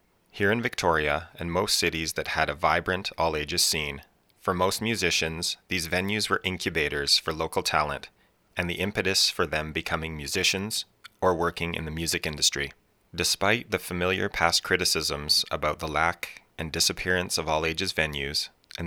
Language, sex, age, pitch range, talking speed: English, male, 30-49, 80-90 Hz, 155 wpm